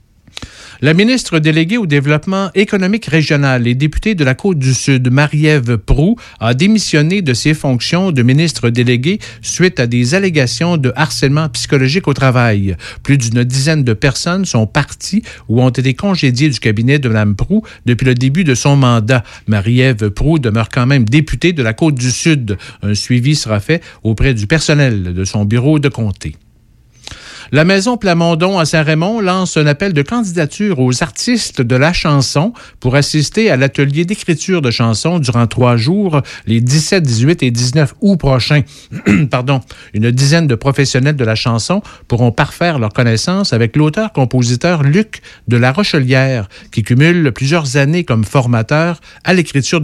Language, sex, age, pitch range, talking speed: French, male, 50-69, 120-165 Hz, 160 wpm